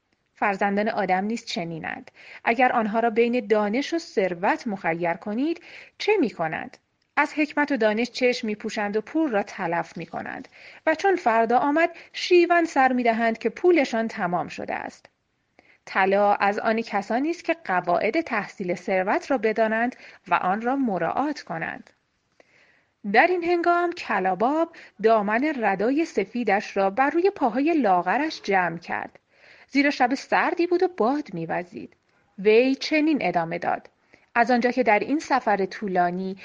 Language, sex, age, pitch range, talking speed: English, female, 30-49, 200-300 Hz, 140 wpm